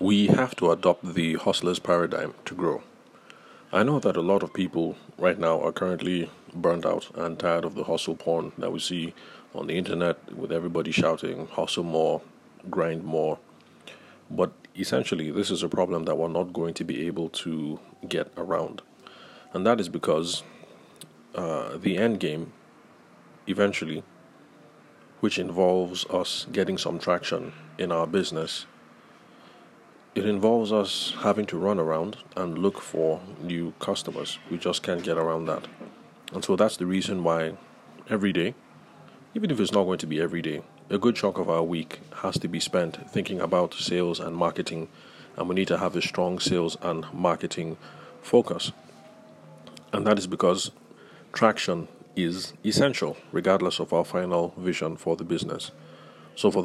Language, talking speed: English, 160 wpm